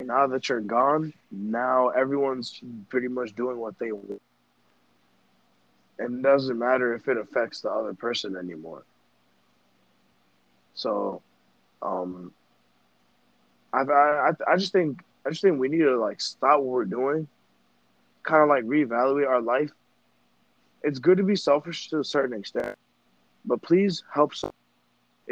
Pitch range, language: 120-150 Hz, English